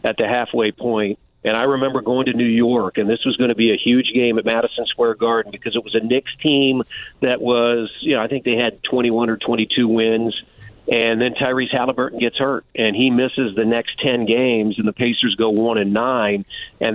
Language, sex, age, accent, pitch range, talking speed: English, male, 50-69, American, 115-135 Hz, 225 wpm